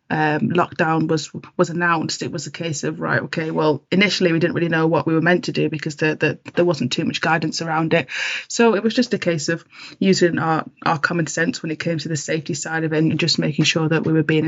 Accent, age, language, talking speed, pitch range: British, 20-39, English, 260 wpm, 160-180 Hz